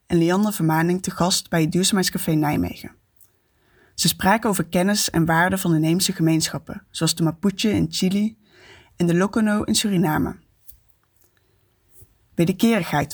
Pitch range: 145-190 Hz